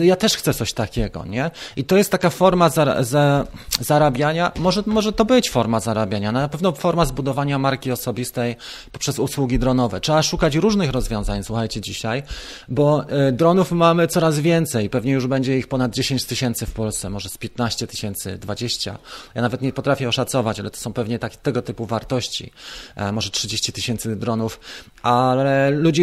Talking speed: 160 wpm